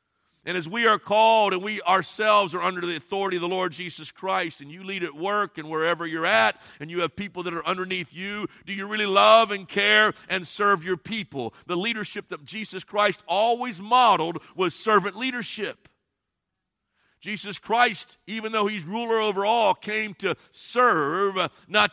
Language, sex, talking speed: English, male, 180 wpm